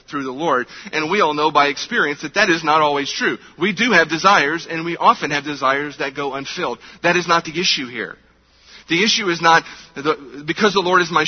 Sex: male